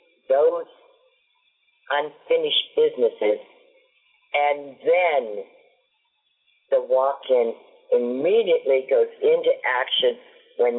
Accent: American